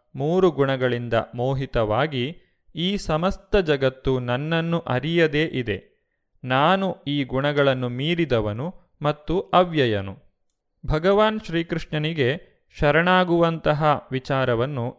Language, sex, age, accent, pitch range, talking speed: Kannada, male, 30-49, native, 130-165 Hz, 75 wpm